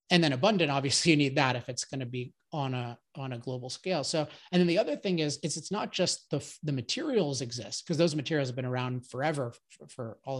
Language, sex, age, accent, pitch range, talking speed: English, male, 30-49, American, 135-175 Hz, 250 wpm